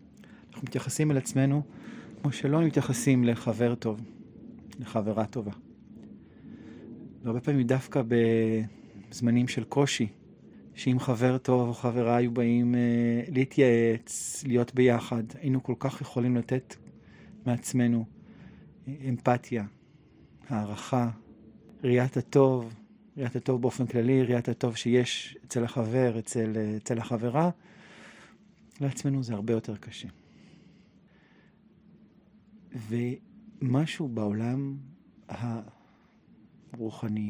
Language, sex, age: Hebrew, male, 40-59